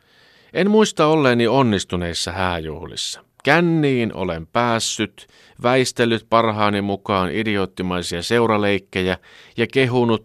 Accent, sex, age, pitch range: native, male, 50-69, 90-120 Hz